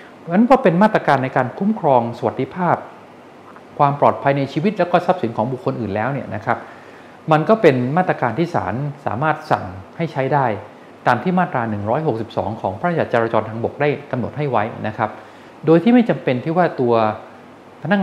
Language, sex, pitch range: Thai, male, 110-155 Hz